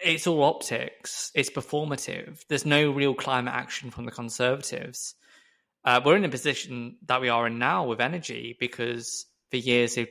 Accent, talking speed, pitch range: British, 170 wpm, 120-145 Hz